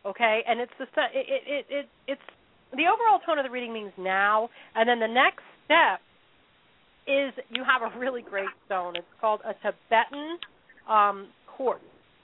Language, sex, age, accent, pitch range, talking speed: English, female, 40-59, American, 205-270 Hz, 145 wpm